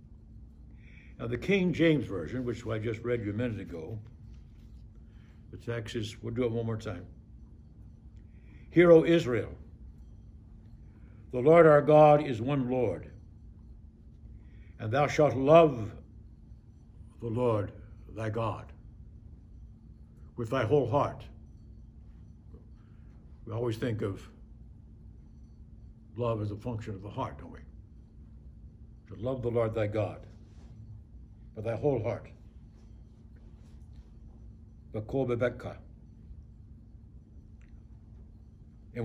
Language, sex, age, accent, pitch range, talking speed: English, male, 60-79, American, 100-120 Hz, 105 wpm